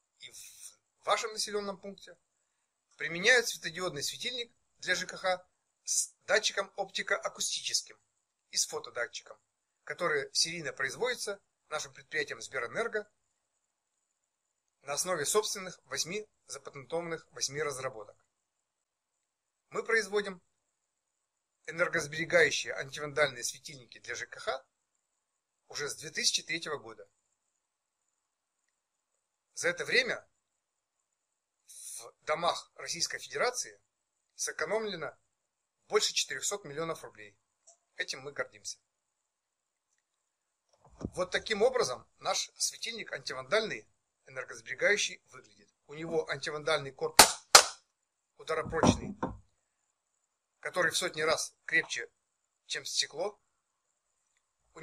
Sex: male